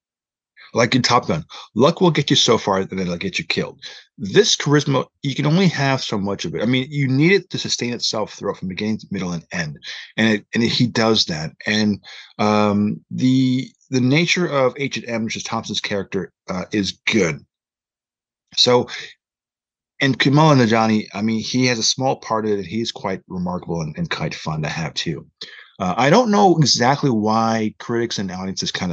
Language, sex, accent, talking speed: English, male, American, 195 wpm